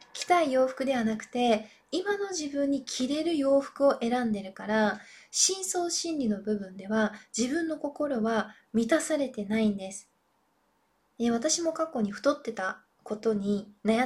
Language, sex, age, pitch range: Japanese, female, 20-39, 215-275 Hz